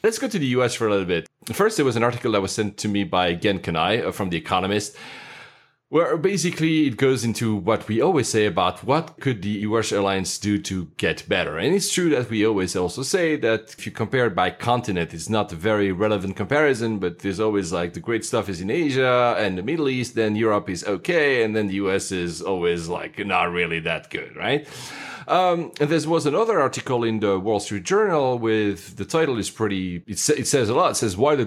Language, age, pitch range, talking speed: English, 30-49, 95-125 Hz, 230 wpm